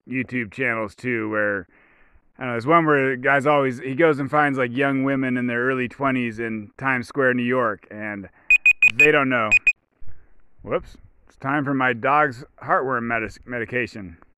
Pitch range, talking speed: 125-155 Hz, 160 wpm